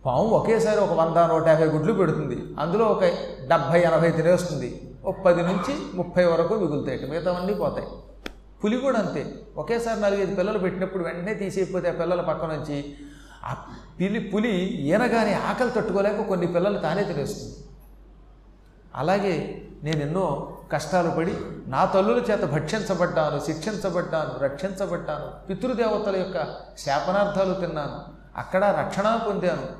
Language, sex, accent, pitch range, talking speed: Telugu, male, native, 160-210 Hz, 120 wpm